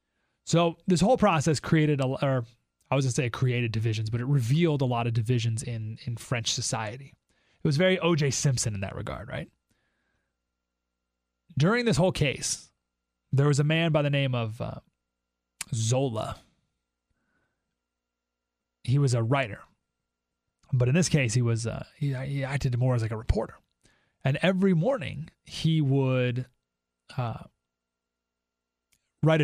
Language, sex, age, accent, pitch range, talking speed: English, male, 30-49, American, 100-150 Hz, 150 wpm